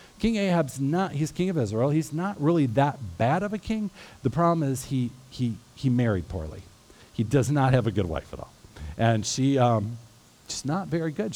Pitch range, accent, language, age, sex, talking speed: 110-145 Hz, American, English, 50-69, male, 205 wpm